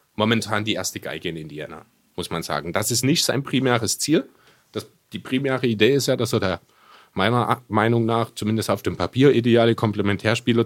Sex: male